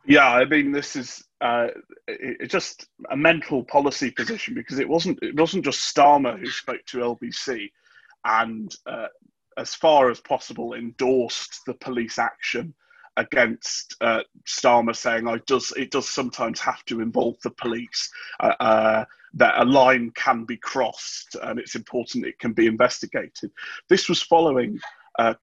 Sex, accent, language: male, British, English